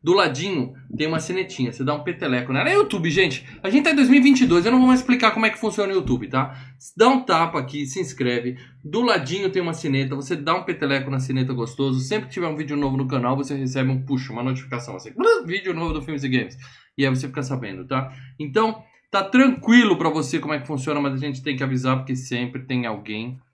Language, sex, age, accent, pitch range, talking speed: Portuguese, male, 20-39, Brazilian, 130-160 Hz, 235 wpm